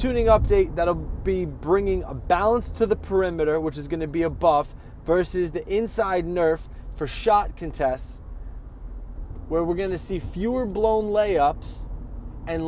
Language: English